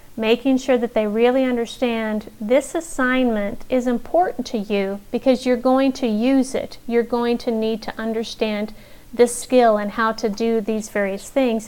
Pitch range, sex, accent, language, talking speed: 220-255 Hz, female, American, English, 170 wpm